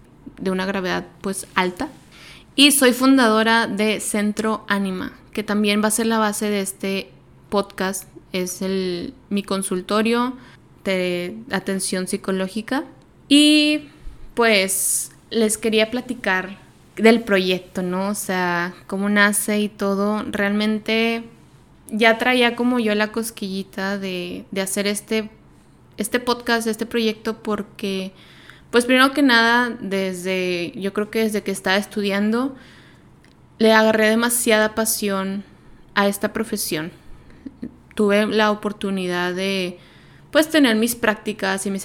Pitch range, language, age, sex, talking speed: 195-225 Hz, Spanish, 20-39, female, 125 wpm